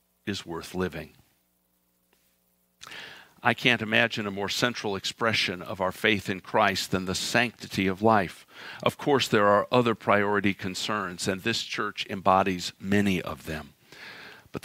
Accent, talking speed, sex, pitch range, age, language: American, 145 wpm, male, 95-115 Hz, 50-69, English